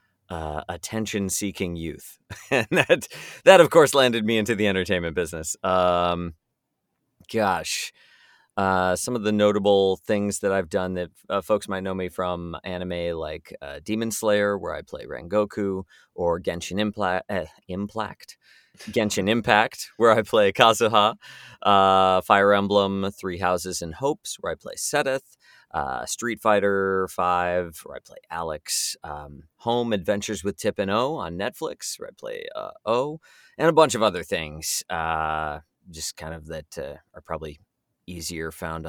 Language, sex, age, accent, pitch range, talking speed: English, male, 30-49, American, 85-105 Hz, 155 wpm